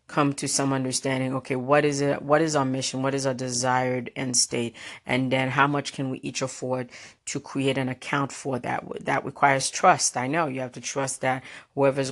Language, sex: English, female